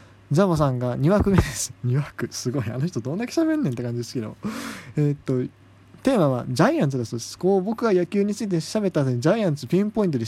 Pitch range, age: 120-185 Hz, 20-39